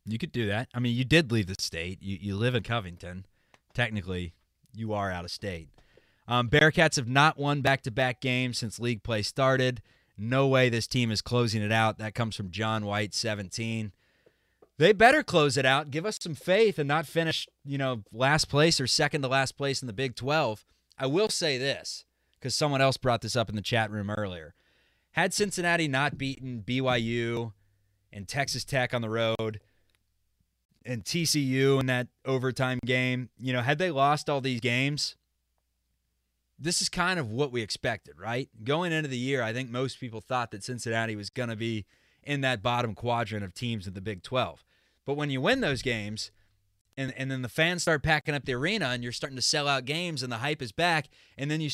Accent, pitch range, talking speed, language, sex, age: American, 110-145 Hz, 200 wpm, English, male, 20-39